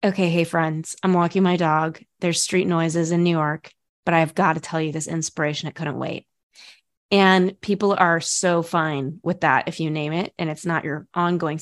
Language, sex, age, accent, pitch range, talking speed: English, female, 20-39, American, 165-190 Hz, 205 wpm